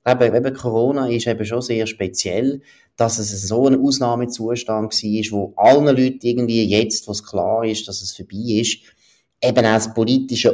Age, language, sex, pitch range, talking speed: 30-49, German, male, 95-120 Hz, 175 wpm